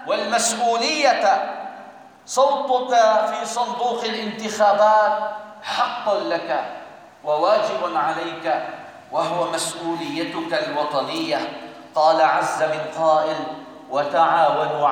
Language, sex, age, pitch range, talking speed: Arabic, male, 40-59, 180-260 Hz, 70 wpm